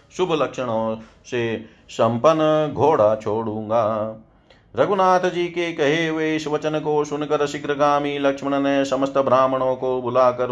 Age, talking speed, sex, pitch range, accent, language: 40-59, 120 wpm, male, 120-145 Hz, native, Hindi